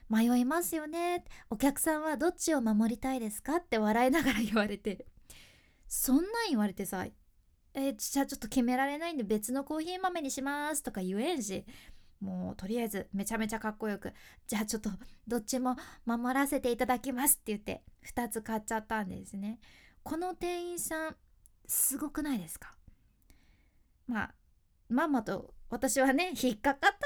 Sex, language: female, Japanese